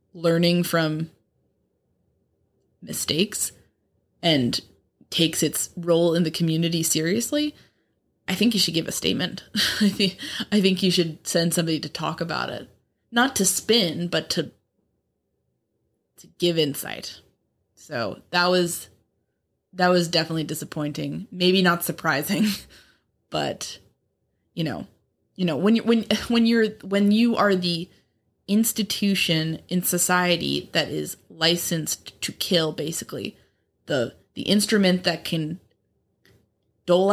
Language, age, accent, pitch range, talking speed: English, 20-39, American, 155-195 Hz, 120 wpm